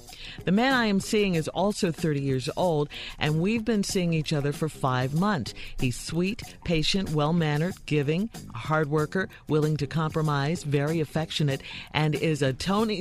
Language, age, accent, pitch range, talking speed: English, 50-69, American, 140-185 Hz, 170 wpm